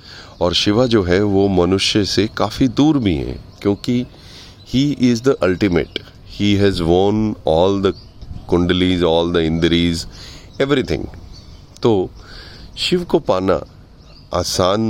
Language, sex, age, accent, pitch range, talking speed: Hindi, male, 30-49, native, 90-115 Hz, 125 wpm